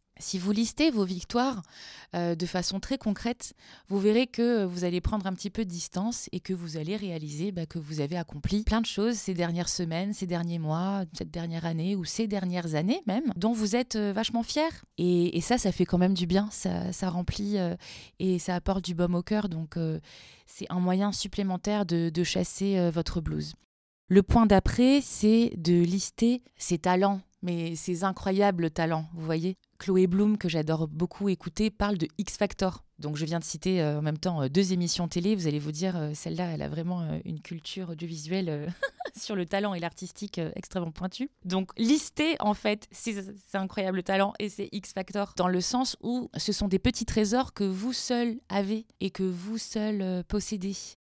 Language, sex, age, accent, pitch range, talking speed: French, female, 20-39, French, 175-210 Hz, 205 wpm